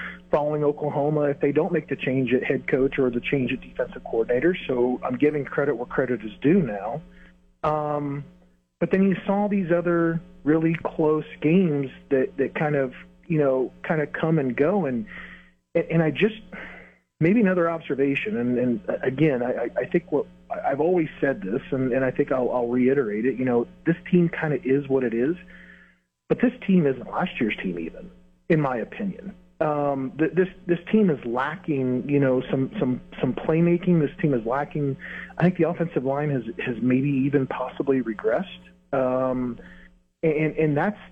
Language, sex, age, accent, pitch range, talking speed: English, male, 40-59, American, 130-175 Hz, 185 wpm